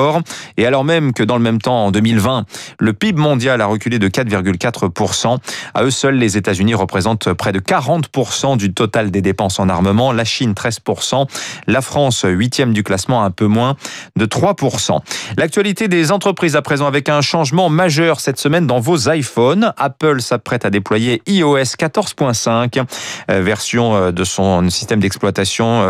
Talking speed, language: 160 wpm, French